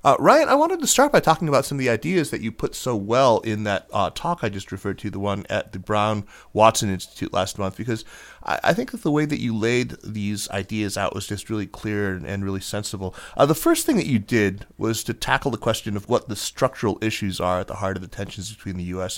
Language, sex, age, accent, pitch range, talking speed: English, male, 30-49, American, 95-110 Hz, 255 wpm